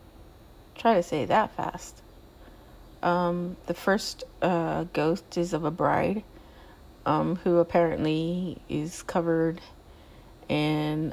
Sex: female